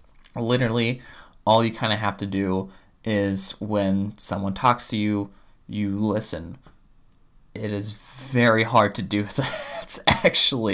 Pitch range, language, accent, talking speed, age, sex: 100-120 Hz, English, American, 135 wpm, 20-39, male